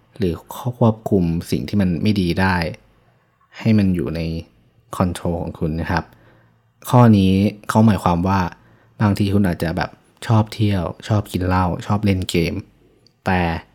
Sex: male